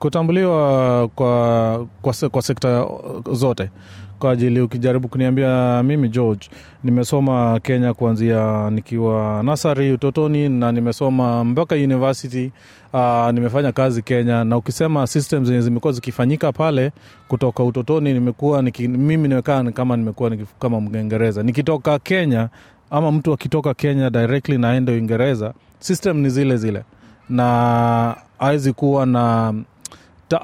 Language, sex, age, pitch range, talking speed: Swahili, male, 30-49, 115-140 Hz, 120 wpm